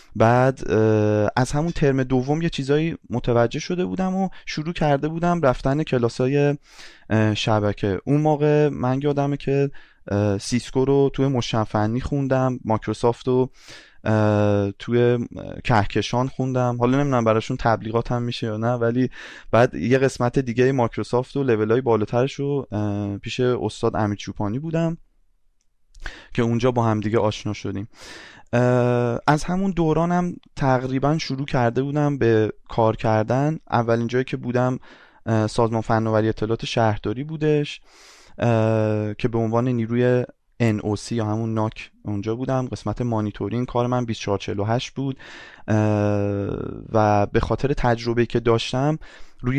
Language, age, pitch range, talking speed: Persian, 20-39, 110-135 Hz, 125 wpm